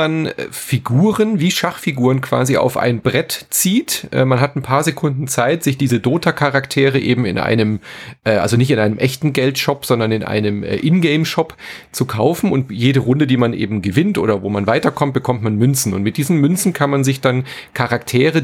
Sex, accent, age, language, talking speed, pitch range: male, German, 40-59, German, 190 wpm, 120-150 Hz